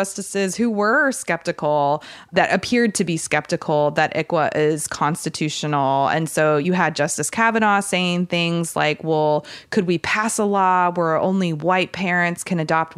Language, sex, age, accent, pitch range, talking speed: English, female, 20-39, American, 160-205 Hz, 155 wpm